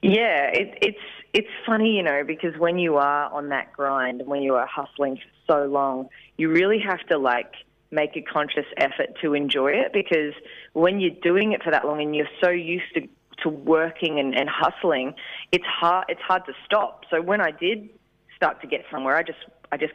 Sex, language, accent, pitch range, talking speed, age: female, English, Australian, 140-165 Hz, 210 wpm, 20-39